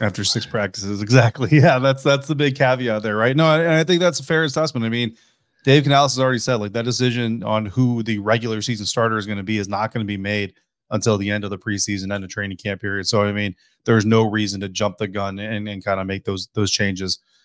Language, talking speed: English, 260 wpm